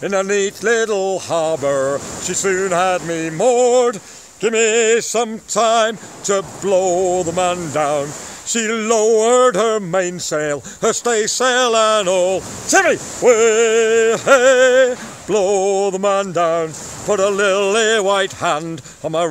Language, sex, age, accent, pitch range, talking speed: French, male, 50-69, British, 175-225 Hz, 125 wpm